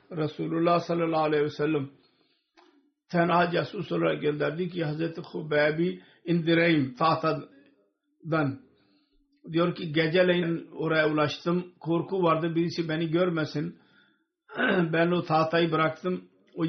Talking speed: 105 wpm